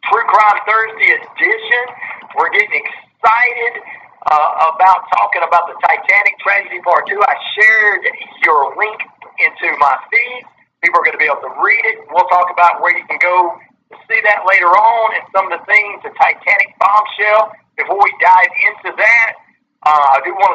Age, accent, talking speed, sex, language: 50-69, American, 180 wpm, male, English